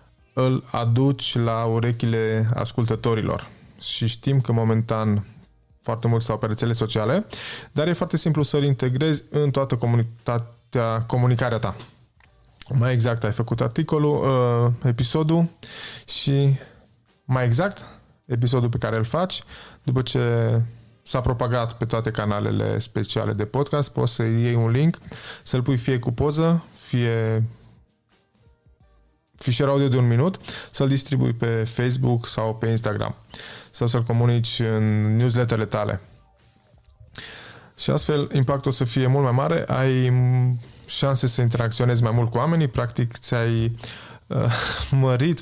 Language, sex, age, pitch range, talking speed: Romanian, male, 20-39, 115-135 Hz, 130 wpm